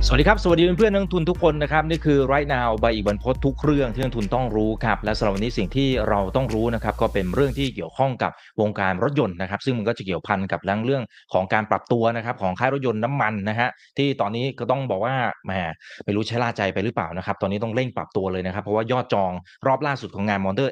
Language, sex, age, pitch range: Thai, male, 20-39, 100-135 Hz